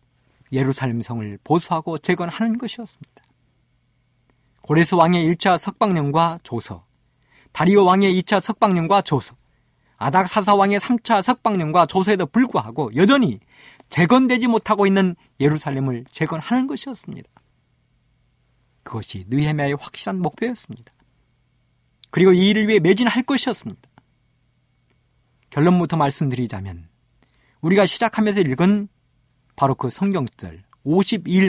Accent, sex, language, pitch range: native, male, Korean, 130-210 Hz